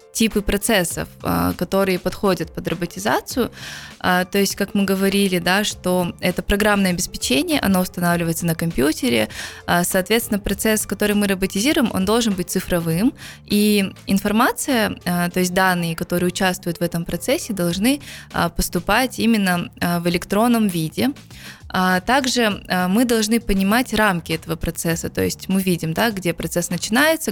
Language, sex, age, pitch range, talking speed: Russian, female, 20-39, 175-210 Hz, 130 wpm